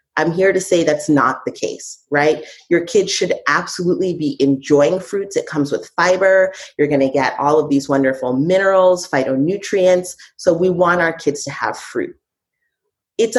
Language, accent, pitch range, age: English, American, 150-205 Hz, 30-49